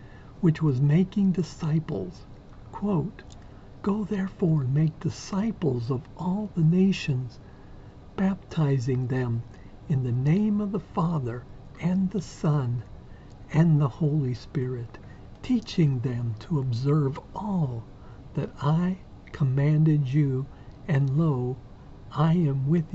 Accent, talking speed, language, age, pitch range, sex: American, 110 wpm, English, 60-79, 125-165 Hz, male